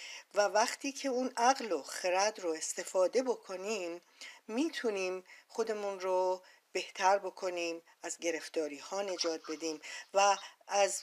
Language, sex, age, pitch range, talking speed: Persian, female, 40-59, 160-210 Hz, 120 wpm